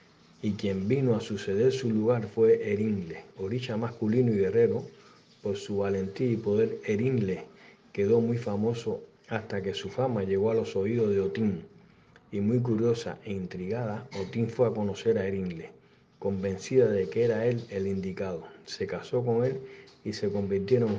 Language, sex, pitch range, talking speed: Spanish, male, 100-125 Hz, 165 wpm